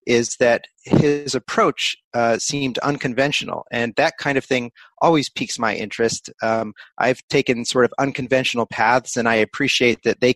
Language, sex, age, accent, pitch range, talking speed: English, male, 30-49, American, 115-135 Hz, 160 wpm